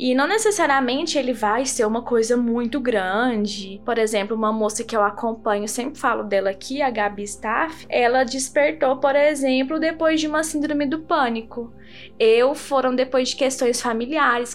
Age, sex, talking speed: 10-29, female, 165 wpm